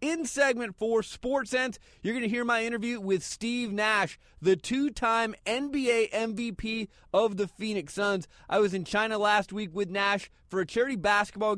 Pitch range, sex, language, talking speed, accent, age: 175-215 Hz, male, English, 170 wpm, American, 30-49